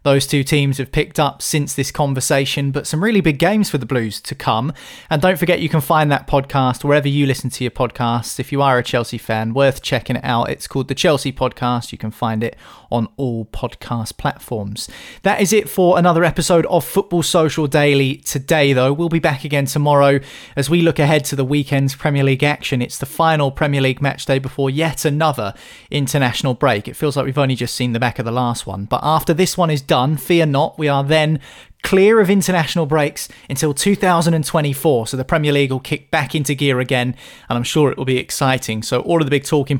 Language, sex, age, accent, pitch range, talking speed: English, male, 30-49, British, 130-160 Hz, 225 wpm